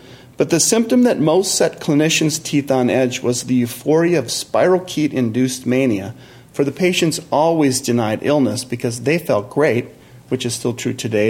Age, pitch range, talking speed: 40-59, 120-150 Hz, 165 wpm